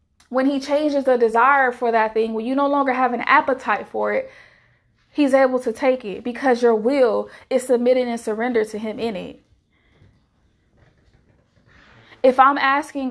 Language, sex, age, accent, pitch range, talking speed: English, female, 20-39, American, 210-240 Hz, 165 wpm